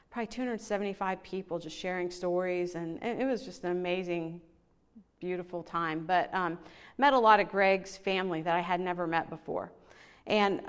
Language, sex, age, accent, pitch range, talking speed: English, female, 40-59, American, 175-205 Hz, 165 wpm